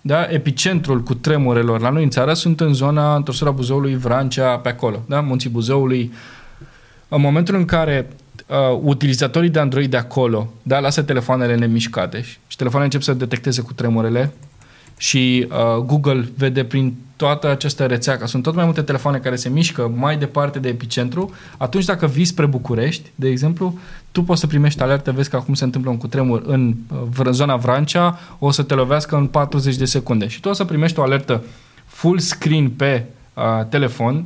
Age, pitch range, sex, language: 20-39, 125-150 Hz, male, Romanian